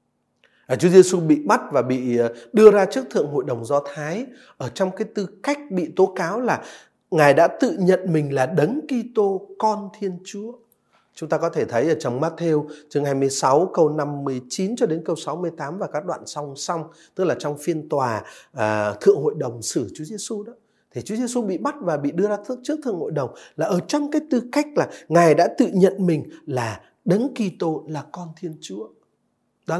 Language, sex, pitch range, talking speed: Vietnamese, male, 150-225 Hz, 205 wpm